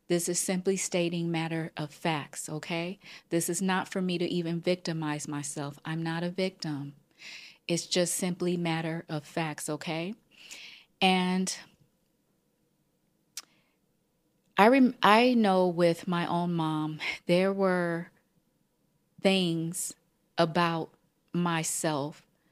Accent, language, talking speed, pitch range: American, English, 110 wpm, 160-185 Hz